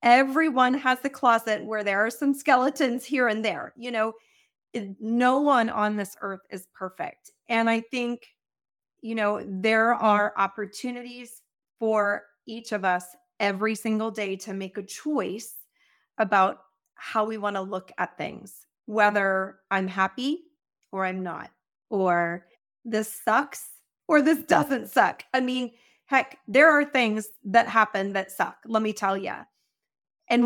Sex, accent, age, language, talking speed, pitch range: female, American, 30-49, English, 150 wpm, 200-245 Hz